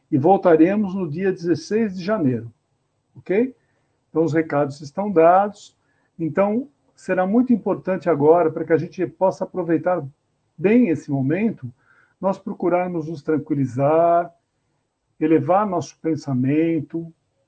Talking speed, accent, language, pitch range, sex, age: 115 wpm, Brazilian, Portuguese, 140-175 Hz, male, 60-79